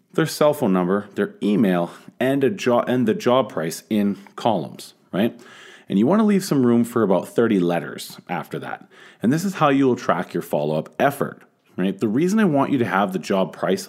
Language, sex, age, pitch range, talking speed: English, male, 30-49, 95-140 Hz, 215 wpm